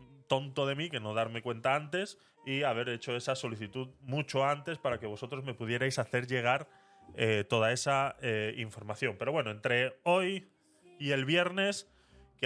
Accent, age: Spanish, 20-39